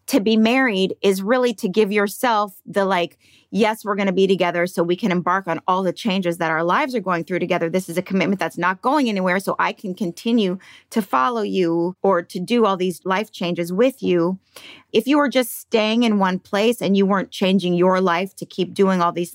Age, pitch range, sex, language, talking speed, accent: 30-49, 175-220 Hz, female, English, 230 wpm, American